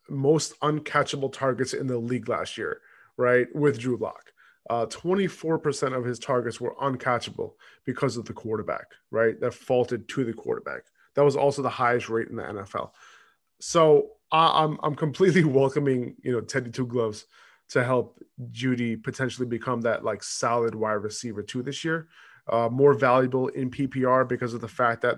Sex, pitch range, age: male, 120-155 Hz, 20-39